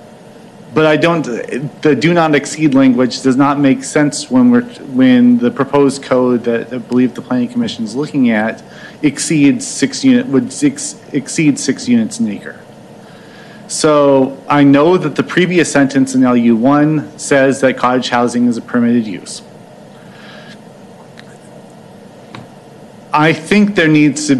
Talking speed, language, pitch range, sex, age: 150 wpm, English, 130-160 Hz, male, 40-59